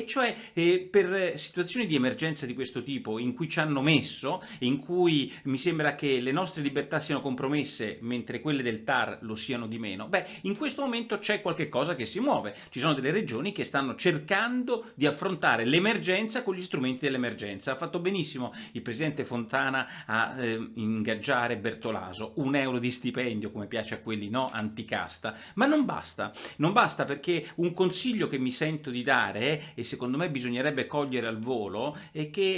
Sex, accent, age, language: male, native, 40-59, Italian